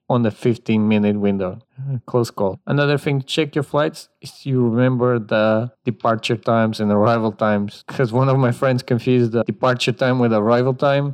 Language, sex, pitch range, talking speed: English, male, 115-160 Hz, 185 wpm